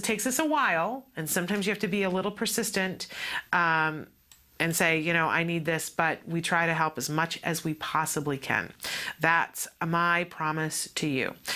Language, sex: English, female